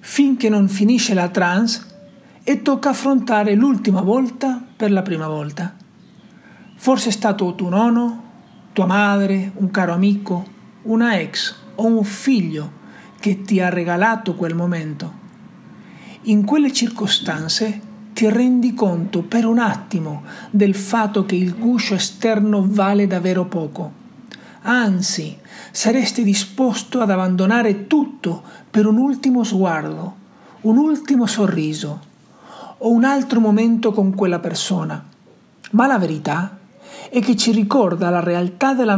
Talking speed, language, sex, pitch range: 130 wpm, Italian, male, 190-235 Hz